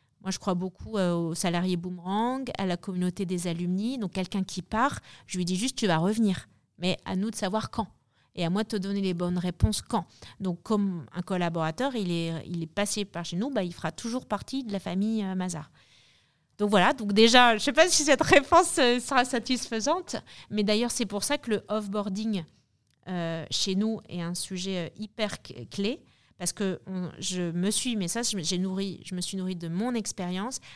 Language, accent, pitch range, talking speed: French, French, 175-220 Hz, 190 wpm